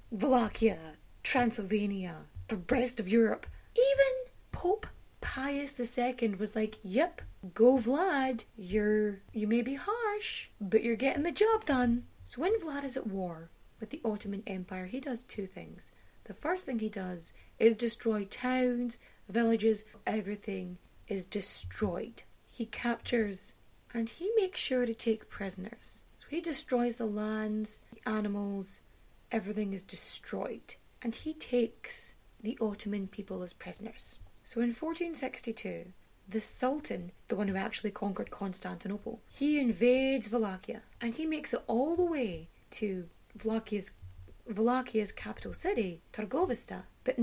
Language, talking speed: English, 140 wpm